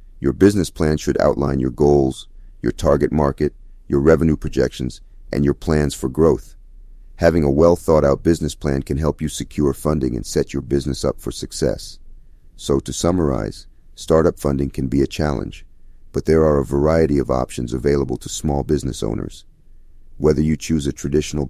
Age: 40-59